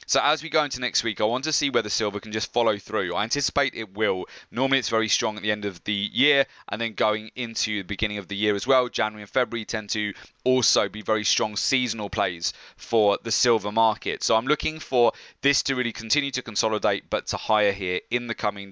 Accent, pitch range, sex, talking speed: British, 105-130 Hz, male, 235 wpm